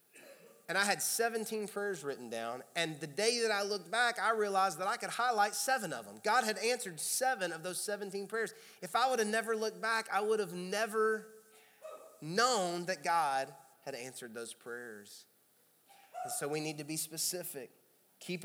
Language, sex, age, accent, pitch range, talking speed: English, male, 30-49, American, 140-200 Hz, 185 wpm